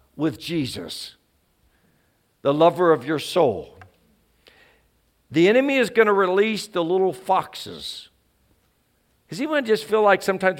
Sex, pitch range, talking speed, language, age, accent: male, 175-260 Hz, 135 wpm, English, 50-69, American